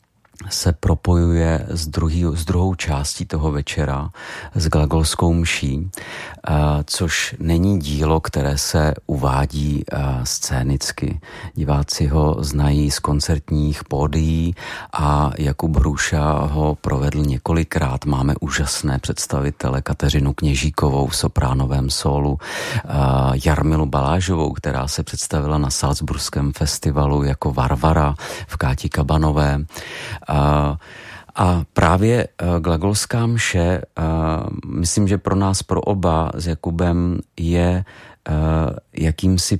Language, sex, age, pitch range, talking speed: Czech, male, 40-59, 75-85 Hz, 95 wpm